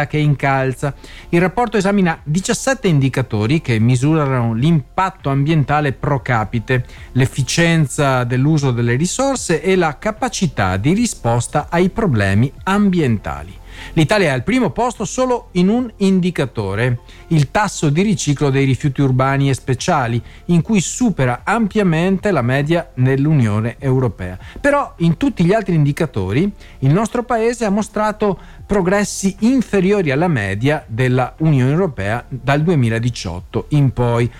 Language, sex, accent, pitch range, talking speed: Italian, male, native, 125-190 Hz, 125 wpm